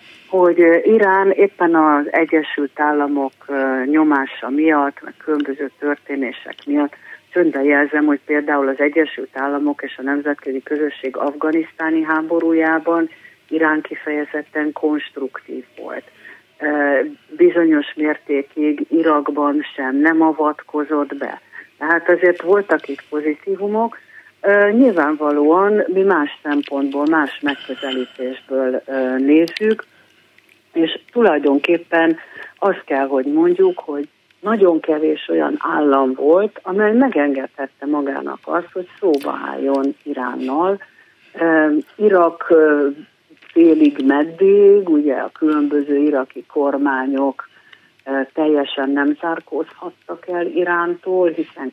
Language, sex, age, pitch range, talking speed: Hungarian, female, 50-69, 140-175 Hz, 95 wpm